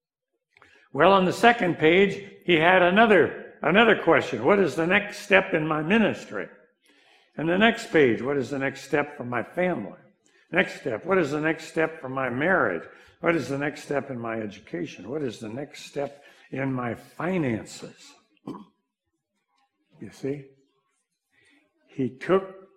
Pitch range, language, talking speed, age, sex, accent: 135-190 Hz, English, 160 wpm, 60-79, male, American